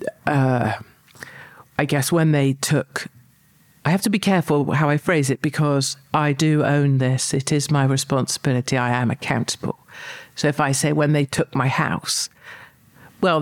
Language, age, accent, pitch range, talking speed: English, 50-69, British, 130-155 Hz, 165 wpm